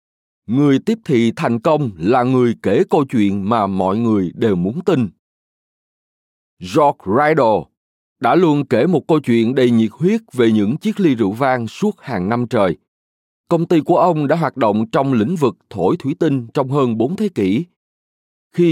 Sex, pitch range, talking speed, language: male, 110-165 Hz, 180 wpm, Vietnamese